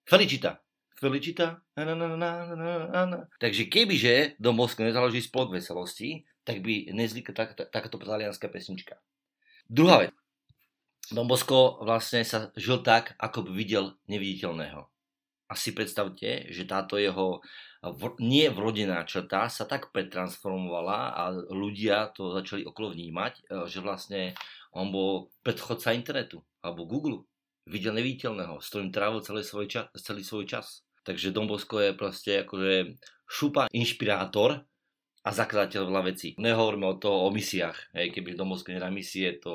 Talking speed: 120 wpm